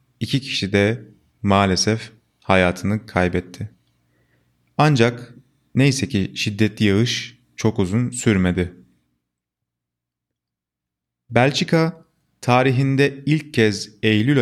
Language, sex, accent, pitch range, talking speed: Turkish, male, native, 100-135 Hz, 80 wpm